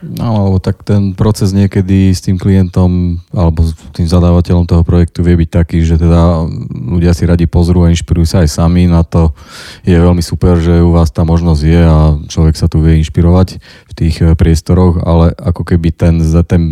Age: 20-39